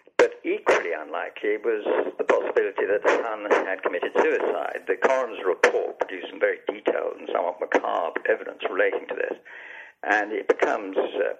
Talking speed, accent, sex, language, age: 155 wpm, British, male, English, 60-79